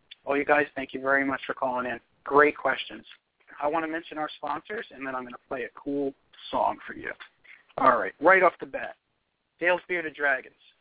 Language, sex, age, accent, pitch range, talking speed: English, male, 40-59, American, 140-160 Hz, 210 wpm